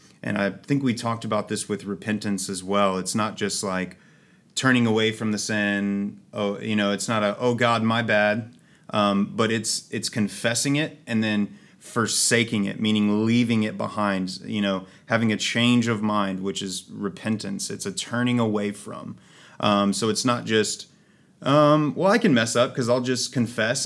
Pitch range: 100-115 Hz